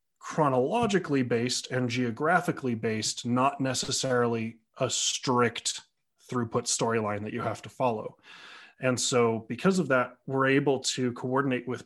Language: English